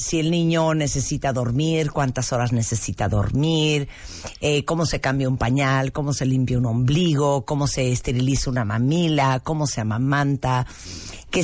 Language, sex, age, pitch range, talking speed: Spanish, female, 50-69, 120-150 Hz, 150 wpm